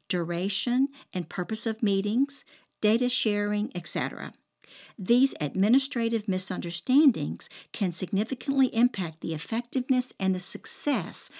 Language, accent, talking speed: English, American, 100 wpm